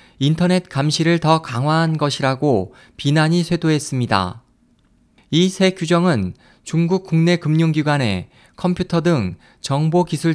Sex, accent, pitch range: male, native, 135-175 Hz